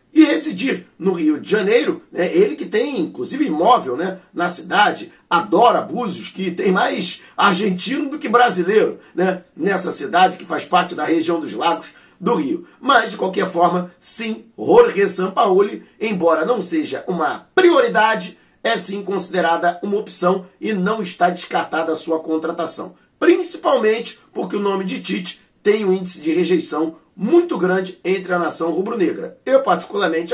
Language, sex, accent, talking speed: Portuguese, male, Brazilian, 155 wpm